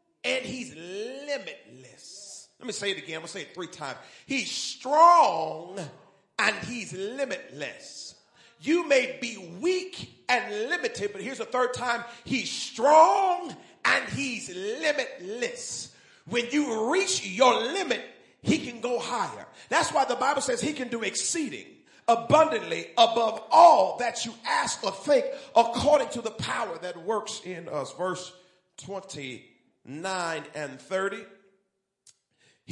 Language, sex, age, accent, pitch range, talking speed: English, male, 40-59, American, 195-295 Hz, 140 wpm